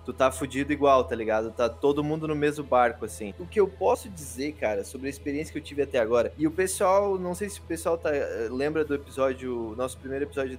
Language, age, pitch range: Portuguese, 20-39, 135-165 Hz